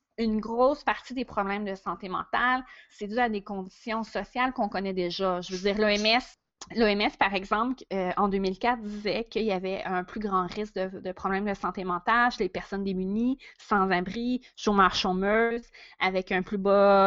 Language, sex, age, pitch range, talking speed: French, female, 30-49, 190-220 Hz, 185 wpm